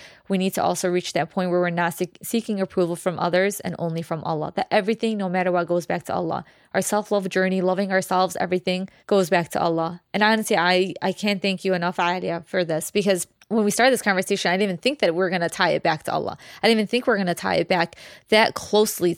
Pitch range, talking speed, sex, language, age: 175-200 Hz, 255 wpm, female, English, 20-39